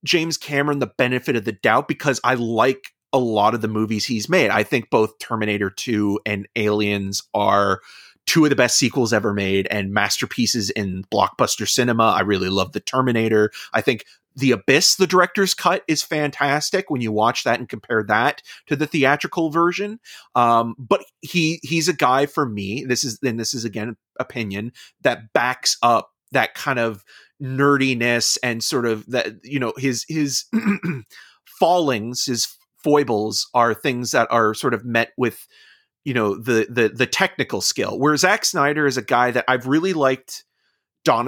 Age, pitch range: 30-49, 110-145 Hz